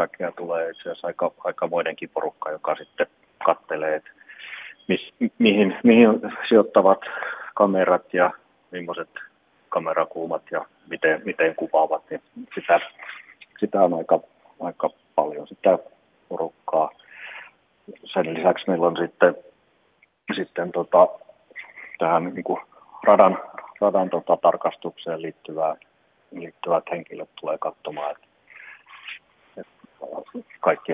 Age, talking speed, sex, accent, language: 30-49, 95 wpm, male, native, Finnish